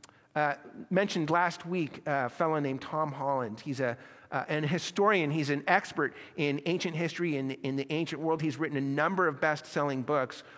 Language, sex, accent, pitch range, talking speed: English, male, American, 140-180 Hz, 180 wpm